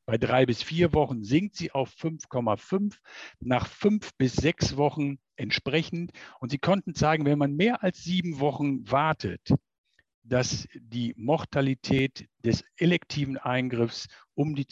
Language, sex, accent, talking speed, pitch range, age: German, male, German, 140 wpm, 125-160 Hz, 50-69